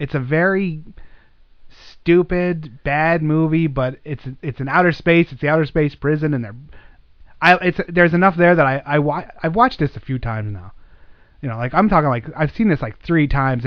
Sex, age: male, 30-49